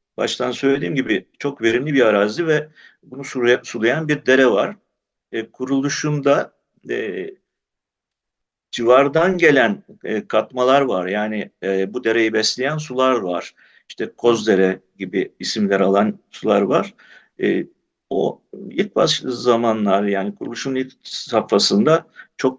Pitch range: 110-150 Hz